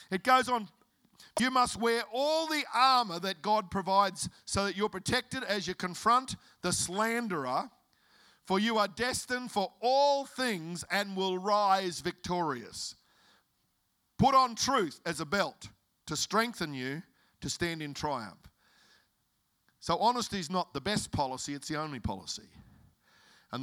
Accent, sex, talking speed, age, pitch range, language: Australian, male, 145 wpm, 50-69, 155-215 Hz, English